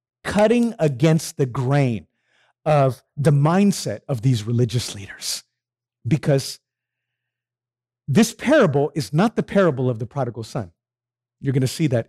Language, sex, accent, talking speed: English, male, American, 135 wpm